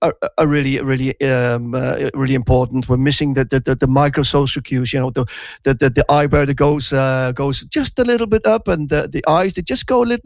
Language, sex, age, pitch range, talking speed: Dutch, male, 40-59, 130-170 Hz, 235 wpm